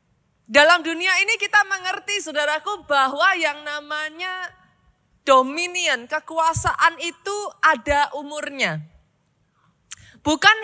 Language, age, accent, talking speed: Indonesian, 20-39, native, 85 wpm